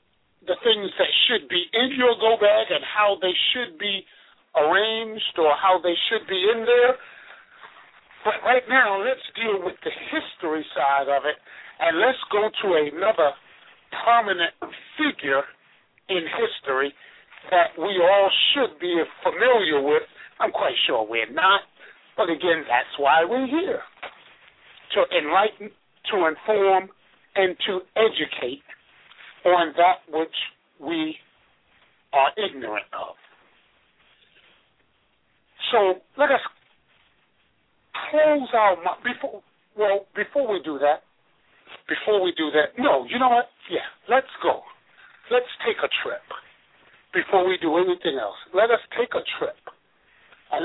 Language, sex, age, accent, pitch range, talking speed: English, male, 50-69, American, 180-280 Hz, 130 wpm